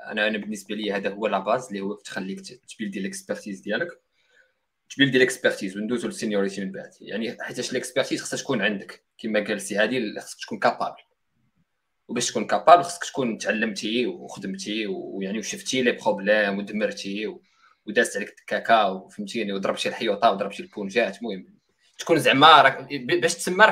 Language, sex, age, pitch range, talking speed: Arabic, male, 20-39, 115-185 Hz, 145 wpm